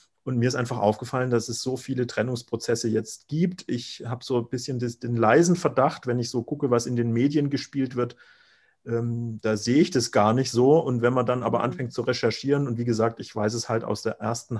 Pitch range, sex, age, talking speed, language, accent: 115-130 Hz, male, 40-59, 225 wpm, English, German